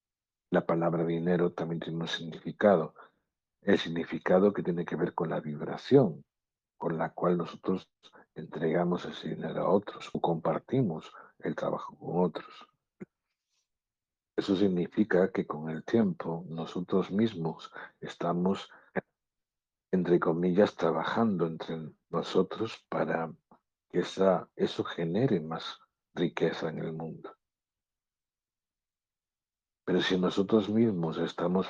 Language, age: Spanish, 60-79